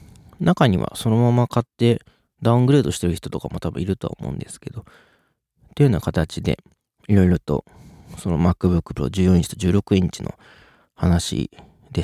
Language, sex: Japanese, male